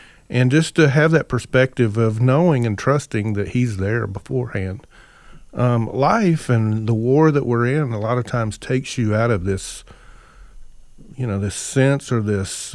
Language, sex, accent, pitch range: English, male, American, 110-140 Hz